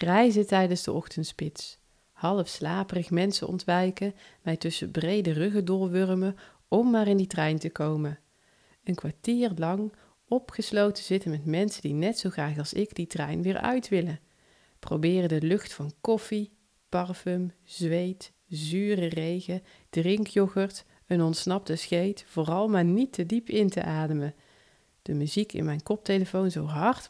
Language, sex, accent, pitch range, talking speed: Dutch, female, Dutch, 165-200 Hz, 145 wpm